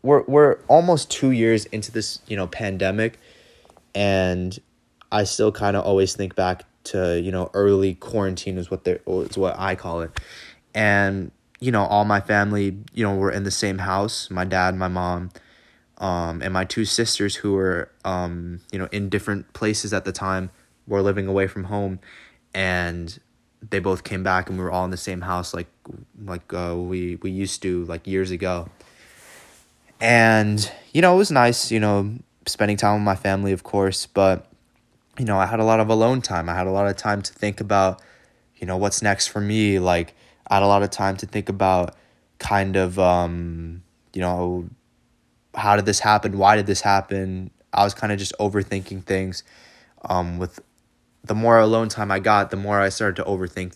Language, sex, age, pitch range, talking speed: English, male, 20-39, 90-105 Hz, 195 wpm